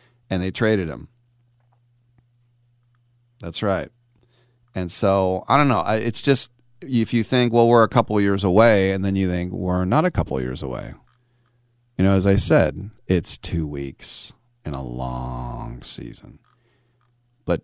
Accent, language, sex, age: American, English, male, 40-59